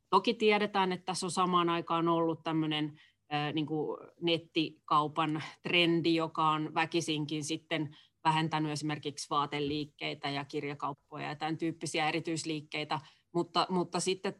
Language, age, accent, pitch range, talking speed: Finnish, 30-49, native, 150-170 Hz, 115 wpm